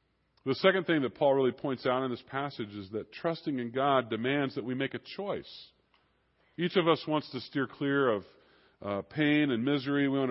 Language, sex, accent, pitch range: English, female, American, 115-145 Hz